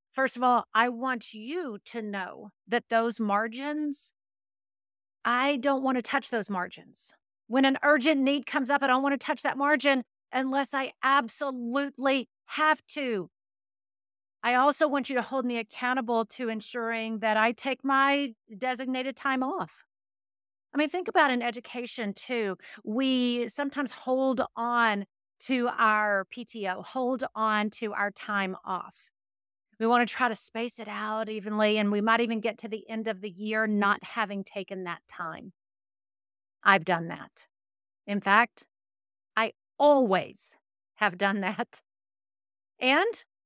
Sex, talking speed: female, 150 wpm